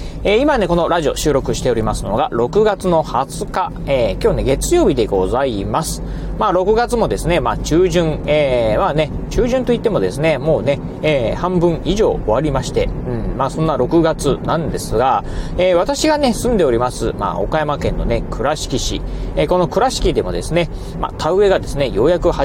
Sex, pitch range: male, 140-180 Hz